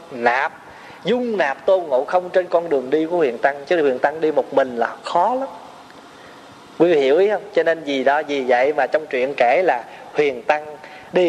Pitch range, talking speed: 160-265 Hz, 215 wpm